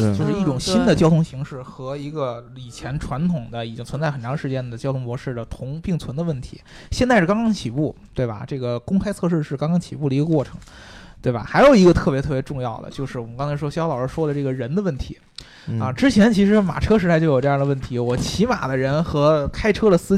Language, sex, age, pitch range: Chinese, male, 20-39, 130-180 Hz